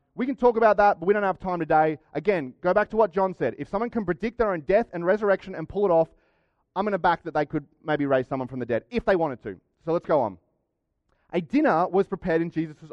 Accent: Australian